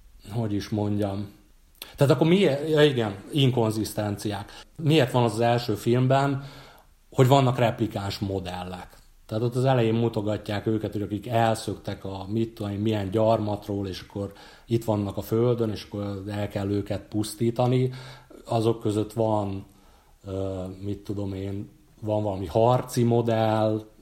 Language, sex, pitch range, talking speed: Hungarian, male, 100-120 Hz, 135 wpm